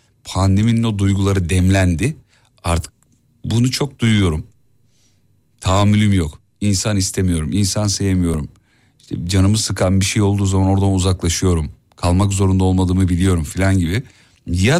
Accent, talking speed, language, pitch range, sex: native, 120 wpm, Turkish, 90-120 Hz, male